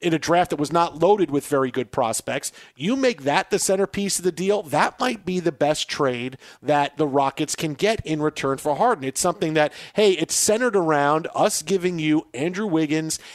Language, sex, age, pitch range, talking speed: English, male, 40-59, 145-180 Hz, 205 wpm